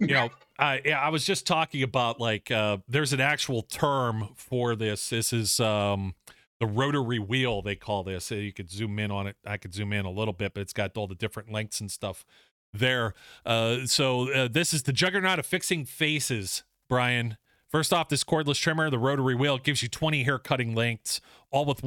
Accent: American